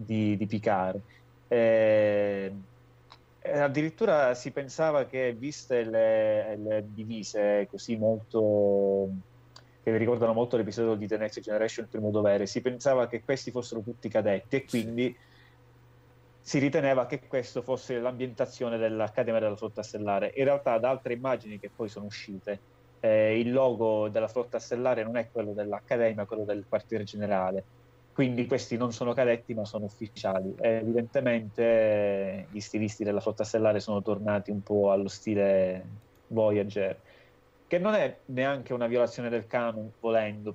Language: Italian